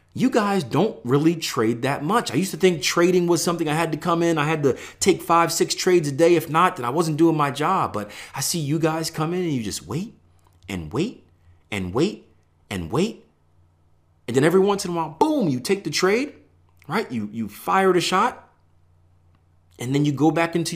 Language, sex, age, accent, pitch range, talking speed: English, male, 40-59, American, 90-150 Hz, 225 wpm